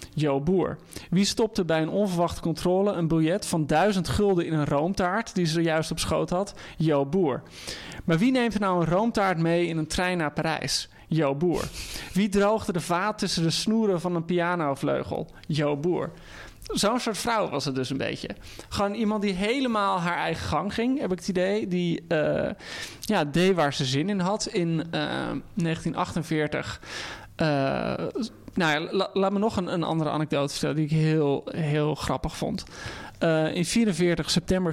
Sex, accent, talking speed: male, Dutch, 185 wpm